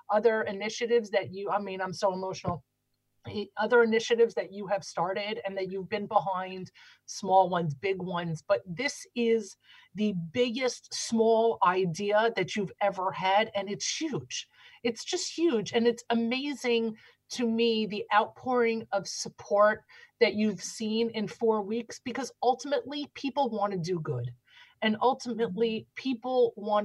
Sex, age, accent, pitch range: female, 30-49, American, 175-230 Hz